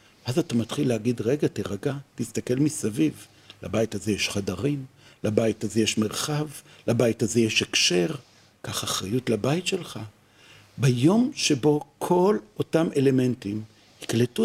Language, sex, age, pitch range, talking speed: Hebrew, male, 60-79, 110-150 Hz, 125 wpm